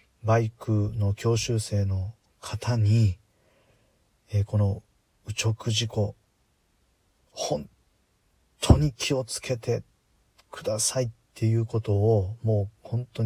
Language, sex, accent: Japanese, male, native